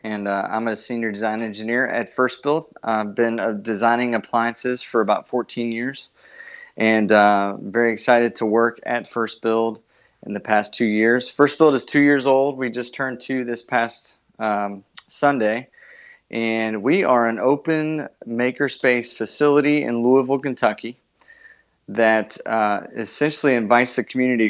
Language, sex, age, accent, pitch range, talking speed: English, male, 30-49, American, 110-125 Hz, 155 wpm